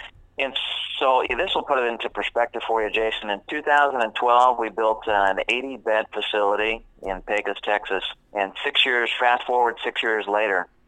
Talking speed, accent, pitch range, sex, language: 160 wpm, American, 95-115 Hz, male, English